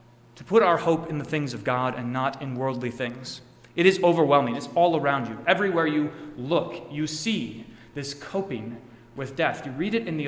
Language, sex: English, male